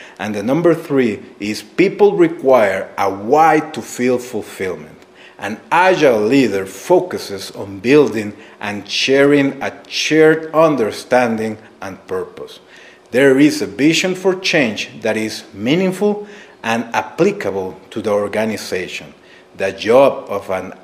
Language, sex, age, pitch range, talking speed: English, male, 40-59, 110-155 Hz, 125 wpm